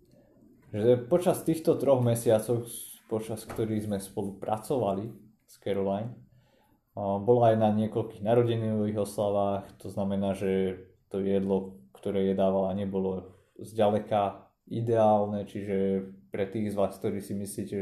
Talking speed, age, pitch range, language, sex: 120 wpm, 30-49, 100-115 Hz, Slovak, male